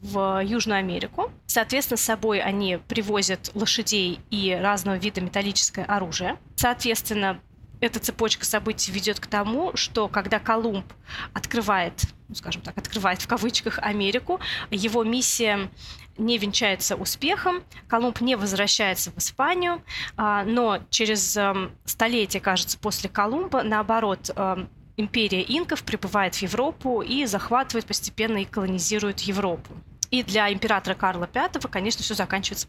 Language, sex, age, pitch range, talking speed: Russian, female, 20-39, 195-235 Hz, 125 wpm